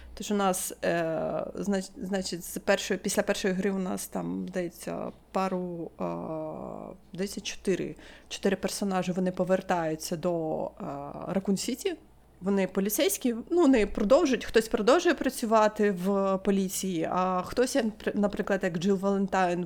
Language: Ukrainian